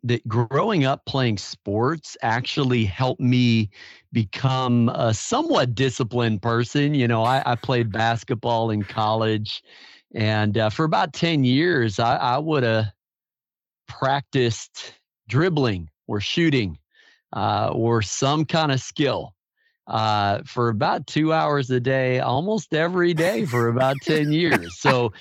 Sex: male